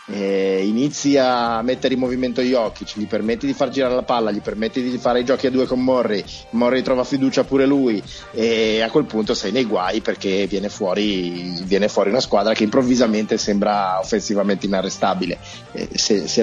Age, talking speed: 30-49, 185 wpm